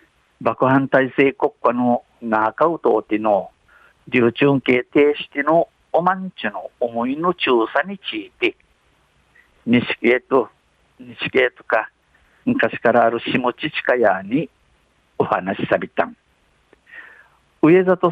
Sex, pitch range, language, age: male, 120-160 Hz, Japanese, 50-69